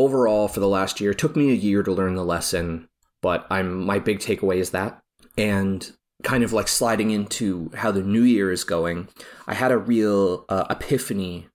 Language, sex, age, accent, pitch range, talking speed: English, male, 30-49, American, 90-115 Hz, 205 wpm